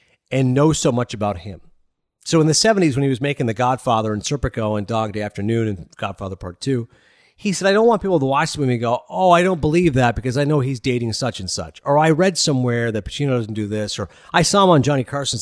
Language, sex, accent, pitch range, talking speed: English, male, American, 110-155 Hz, 260 wpm